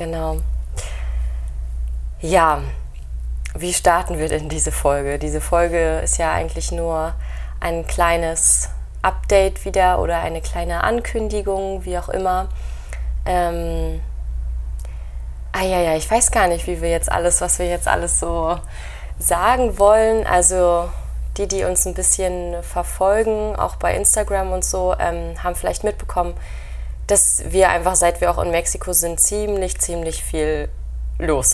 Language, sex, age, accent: German, female, 20-39, German